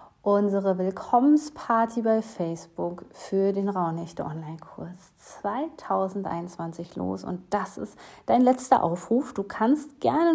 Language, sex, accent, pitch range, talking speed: German, female, German, 180-215 Hz, 105 wpm